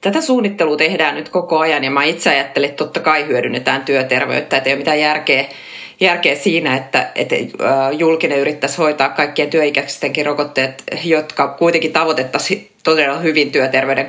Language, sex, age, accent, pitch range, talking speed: Finnish, female, 30-49, native, 140-160 Hz, 155 wpm